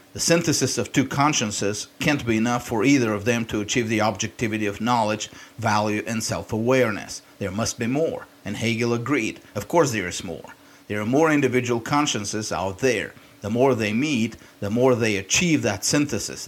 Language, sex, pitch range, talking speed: English, male, 110-135 Hz, 180 wpm